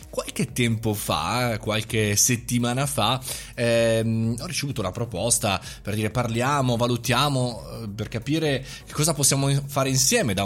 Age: 20-39